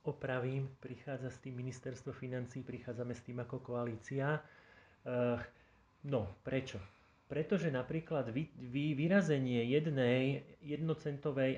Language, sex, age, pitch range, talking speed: Slovak, male, 30-49, 130-150 Hz, 105 wpm